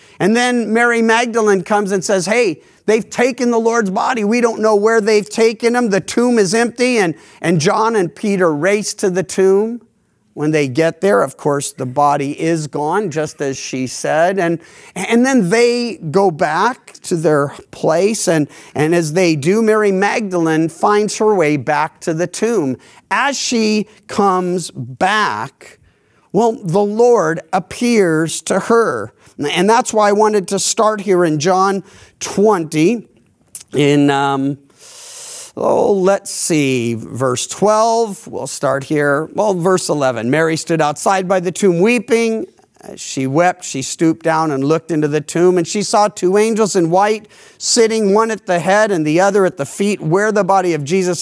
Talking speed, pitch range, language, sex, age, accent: 170 wpm, 160-220 Hz, English, male, 50-69, American